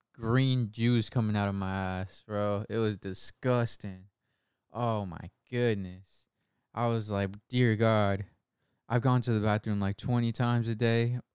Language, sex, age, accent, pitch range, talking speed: English, male, 20-39, American, 100-120 Hz, 155 wpm